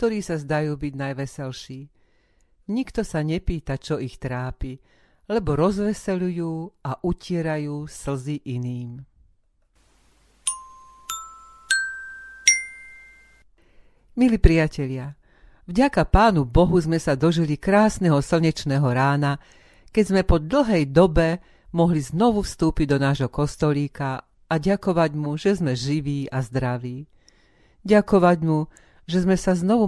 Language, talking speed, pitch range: Slovak, 105 wpm, 135-180 Hz